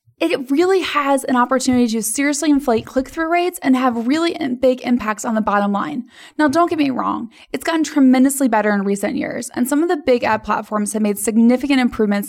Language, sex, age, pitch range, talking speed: English, female, 10-29, 220-275 Hz, 205 wpm